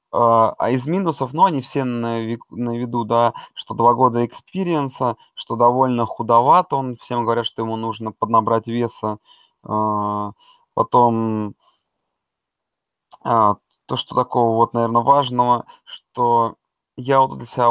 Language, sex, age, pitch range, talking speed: Russian, male, 20-39, 115-140 Hz, 120 wpm